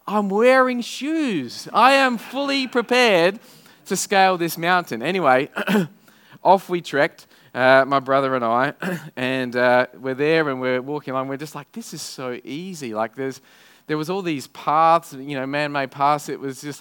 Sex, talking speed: male, 175 wpm